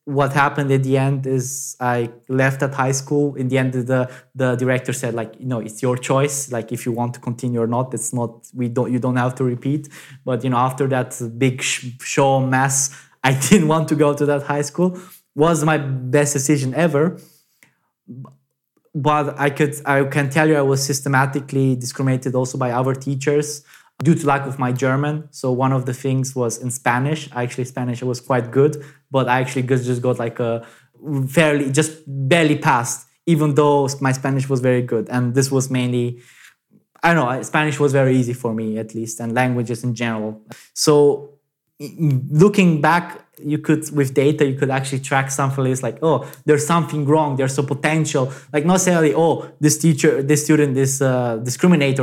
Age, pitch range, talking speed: 20-39, 125-150 Hz, 190 wpm